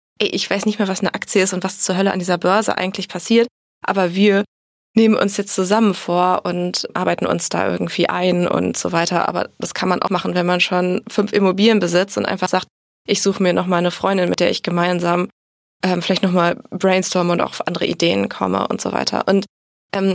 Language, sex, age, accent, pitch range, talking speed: German, female, 20-39, German, 180-210 Hz, 215 wpm